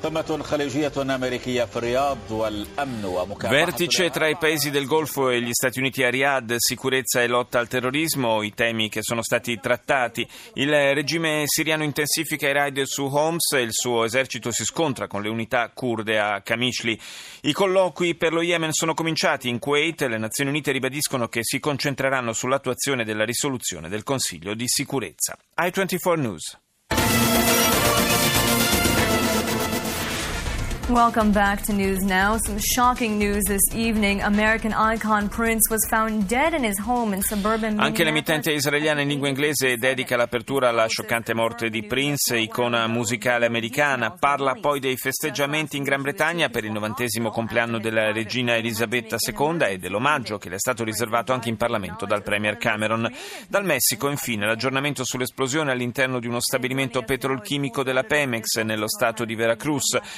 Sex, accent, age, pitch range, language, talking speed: male, native, 30-49, 115-155 Hz, Italian, 140 wpm